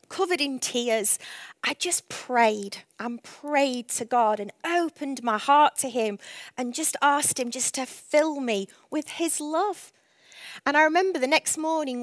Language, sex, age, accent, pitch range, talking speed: English, female, 20-39, British, 230-295 Hz, 165 wpm